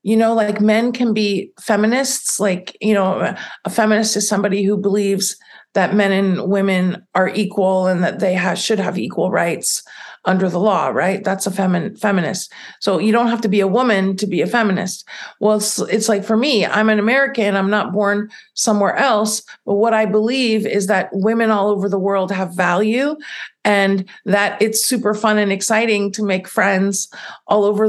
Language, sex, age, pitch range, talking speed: English, female, 50-69, 195-220 Hz, 185 wpm